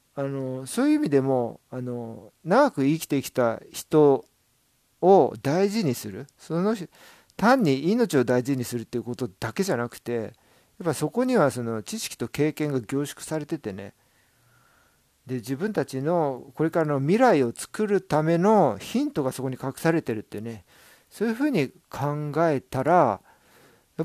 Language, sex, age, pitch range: Japanese, male, 50-69, 120-185 Hz